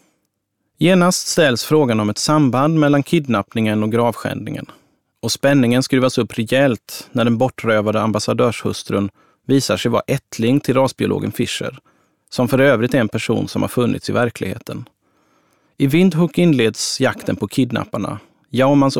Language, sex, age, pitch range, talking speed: Swedish, male, 30-49, 115-140 Hz, 140 wpm